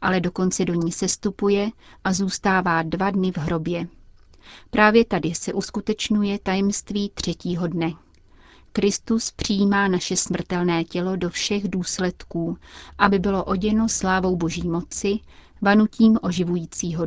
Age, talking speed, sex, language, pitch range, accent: 30-49, 120 wpm, female, Czech, 175-200 Hz, native